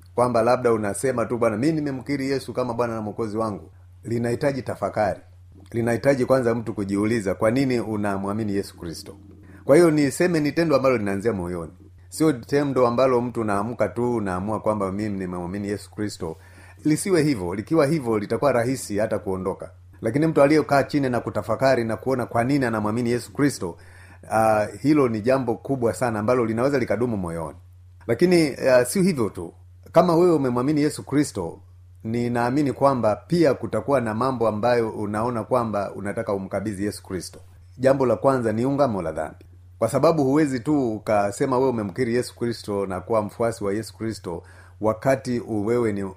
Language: Swahili